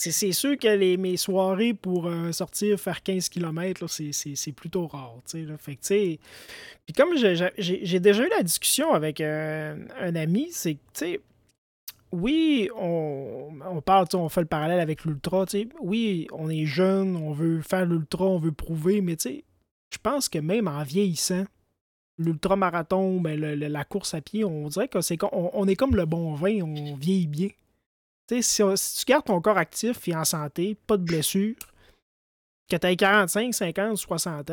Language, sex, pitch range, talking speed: French, male, 160-200 Hz, 175 wpm